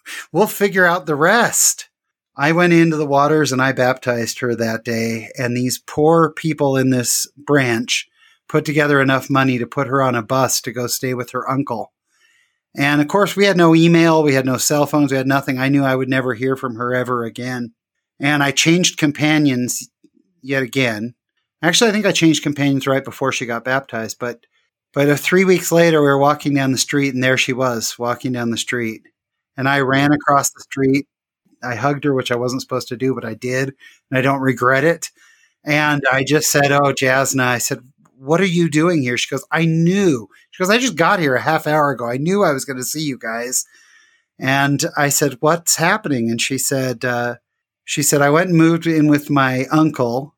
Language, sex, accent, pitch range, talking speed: English, male, American, 125-155 Hz, 210 wpm